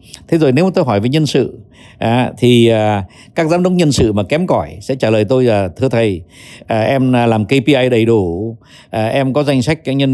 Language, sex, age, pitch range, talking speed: Vietnamese, male, 60-79, 100-130 Hz, 205 wpm